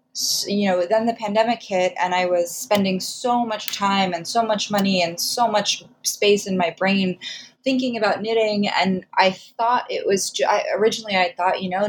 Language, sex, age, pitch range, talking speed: English, female, 20-39, 175-215 Hz, 185 wpm